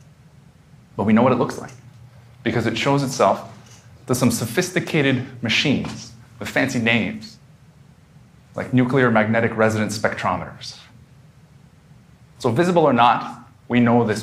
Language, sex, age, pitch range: Korean, male, 30-49, 105-130 Hz